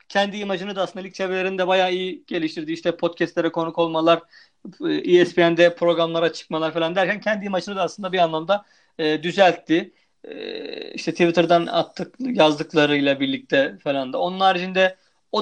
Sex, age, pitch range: male, 40-59, 170-215 Hz